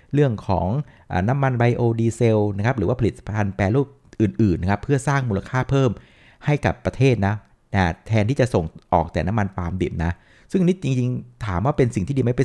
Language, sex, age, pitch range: Thai, male, 60-79, 100-130 Hz